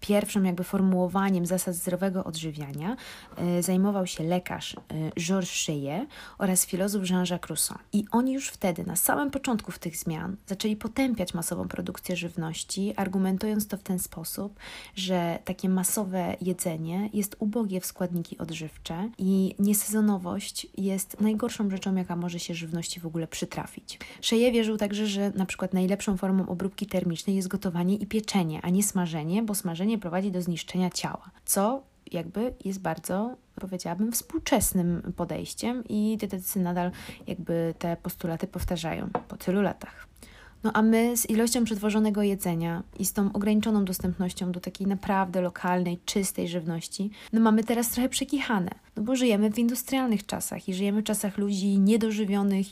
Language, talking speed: Polish, 150 wpm